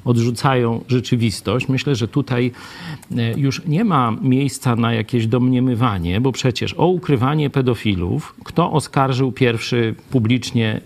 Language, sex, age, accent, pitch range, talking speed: Polish, male, 50-69, native, 115-145 Hz, 115 wpm